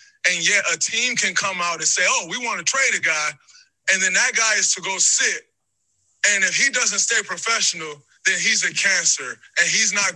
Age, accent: 20-39, American